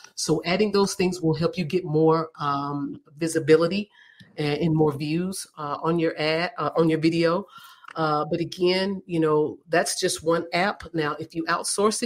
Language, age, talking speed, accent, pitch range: English, 40-59, 175 wpm, American, 155-180 Hz